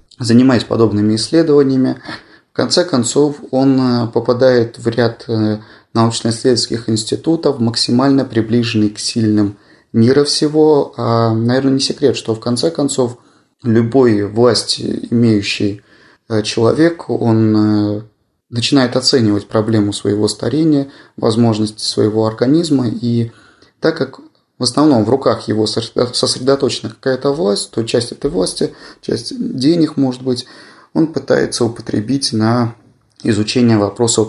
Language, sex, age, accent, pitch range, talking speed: Russian, male, 30-49, native, 110-130 Hz, 110 wpm